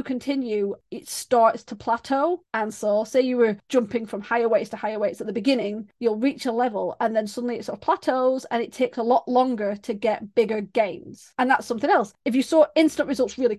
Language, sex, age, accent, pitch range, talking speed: English, female, 30-49, British, 225-270 Hz, 225 wpm